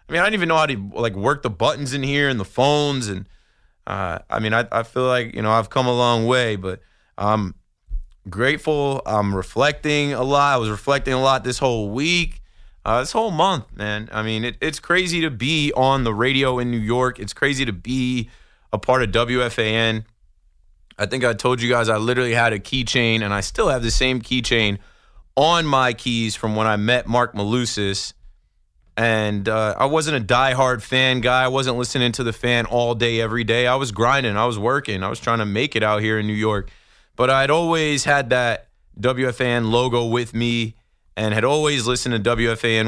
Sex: male